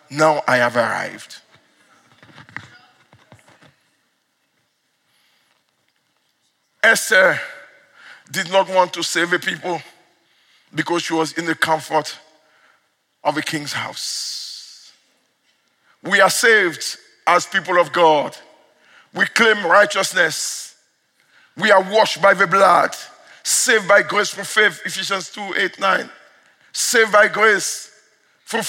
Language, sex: English, male